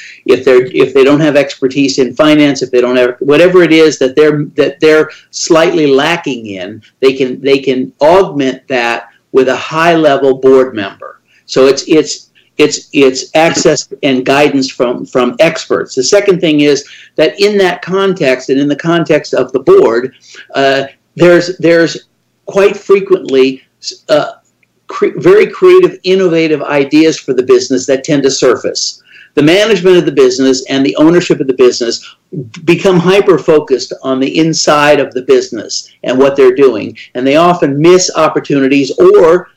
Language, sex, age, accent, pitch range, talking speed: English, male, 50-69, American, 135-185 Hz, 165 wpm